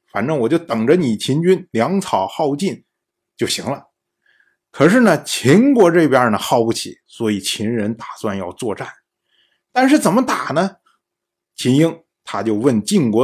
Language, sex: Chinese, male